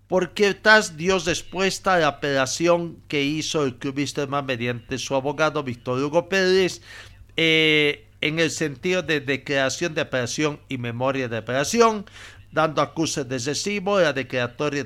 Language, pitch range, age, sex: Spanish, 120-160 Hz, 50-69, male